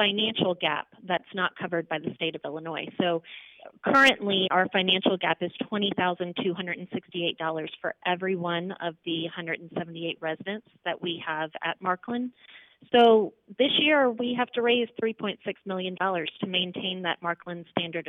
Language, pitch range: English, 180-215 Hz